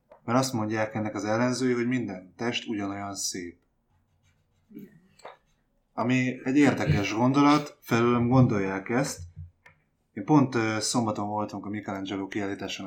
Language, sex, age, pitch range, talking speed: Hungarian, male, 20-39, 100-120 Hz, 115 wpm